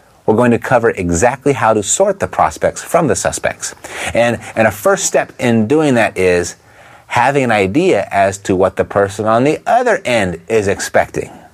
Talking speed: 185 wpm